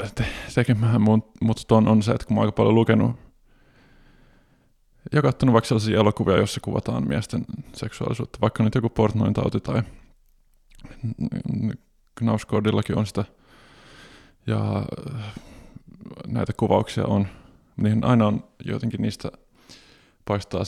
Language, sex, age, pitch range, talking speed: Finnish, male, 20-39, 105-115 Hz, 115 wpm